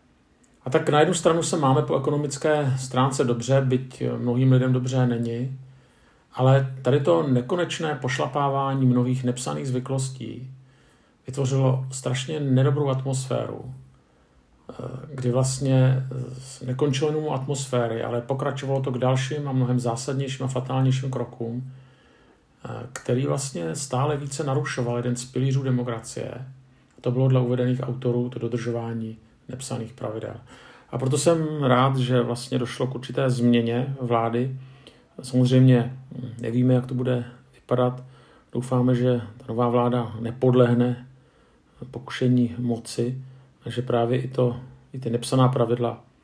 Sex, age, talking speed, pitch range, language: male, 50-69, 125 wpm, 120-130 Hz, Czech